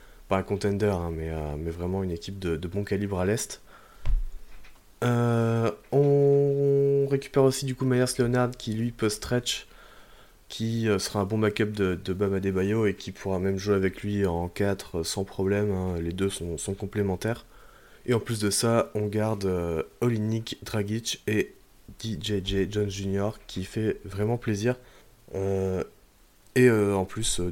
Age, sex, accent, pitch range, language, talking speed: 20-39, male, French, 90-110 Hz, French, 165 wpm